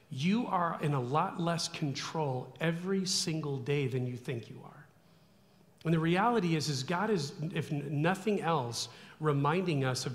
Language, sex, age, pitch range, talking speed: English, male, 40-59, 135-175 Hz, 165 wpm